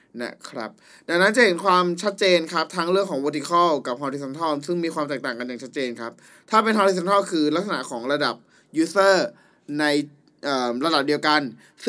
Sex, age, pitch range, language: male, 20-39, 145-185 Hz, Thai